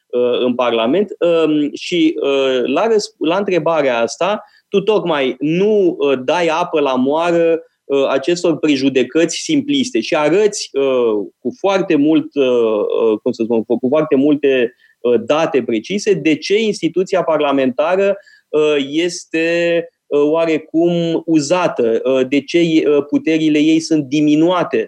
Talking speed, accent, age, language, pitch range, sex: 105 wpm, native, 20-39, Romanian, 150-235 Hz, male